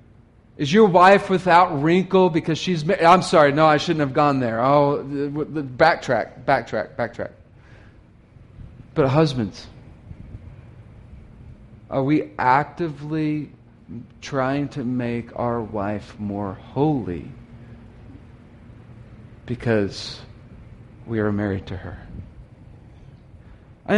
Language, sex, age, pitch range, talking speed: English, male, 40-59, 110-130 Hz, 95 wpm